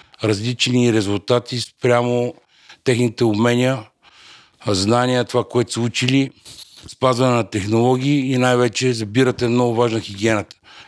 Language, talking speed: Bulgarian, 110 wpm